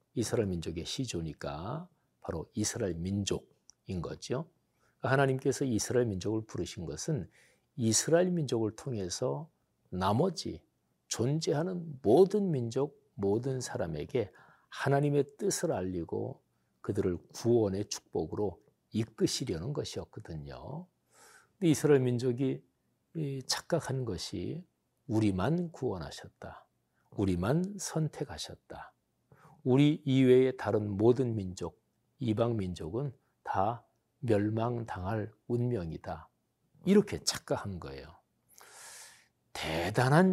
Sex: male